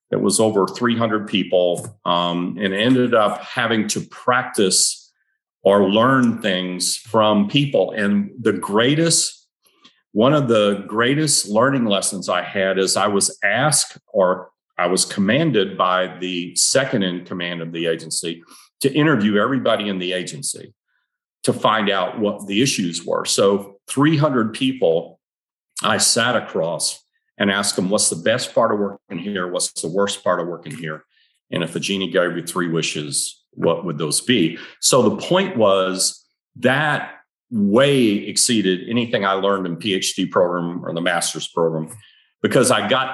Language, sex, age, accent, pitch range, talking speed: English, male, 40-59, American, 90-120 Hz, 155 wpm